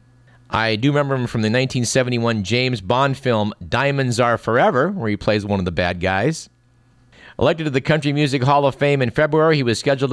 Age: 50-69